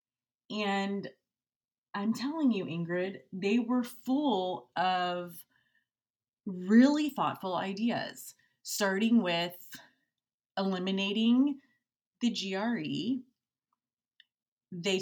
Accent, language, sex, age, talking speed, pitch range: American, English, female, 30-49, 70 wpm, 175-215 Hz